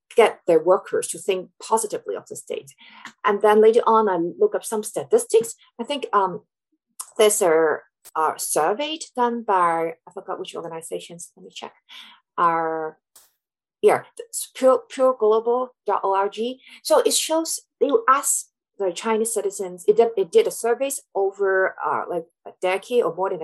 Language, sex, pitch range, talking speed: English, female, 190-315 Hz, 155 wpm